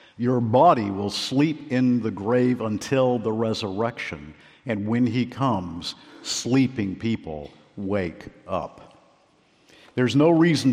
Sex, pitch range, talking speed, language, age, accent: male, 110-145 Hz, 115 wpm, English, 50-69, American